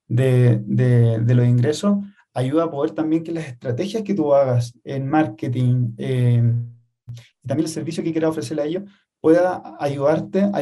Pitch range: 135-165 Hz